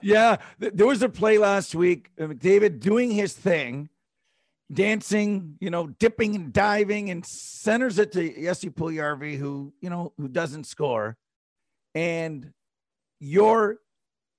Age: 50-69